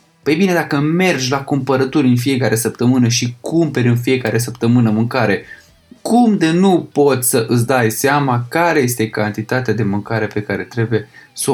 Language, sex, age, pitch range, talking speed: Romanian, male, 20-39, 110-135 Hz, 165 wpm